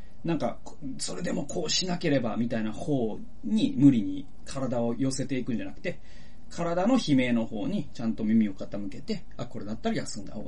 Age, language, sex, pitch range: 40-59, Japanese, male, 110-175 Hz